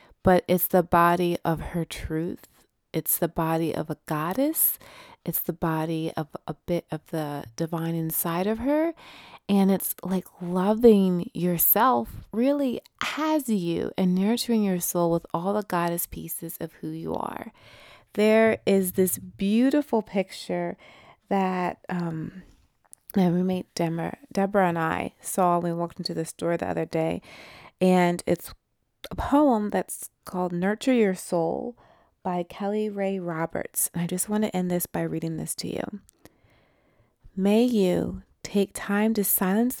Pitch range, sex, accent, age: 170-205 Hz, female, American, 30-49